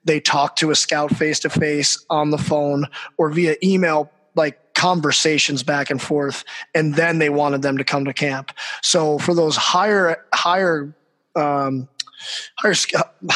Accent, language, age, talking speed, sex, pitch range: American, English, 20-39, 155 wpm, male, 145-165 Hz